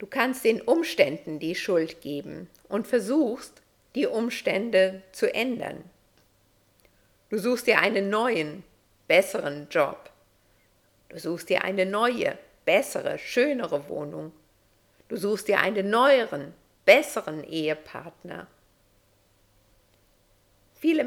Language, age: German, 50-69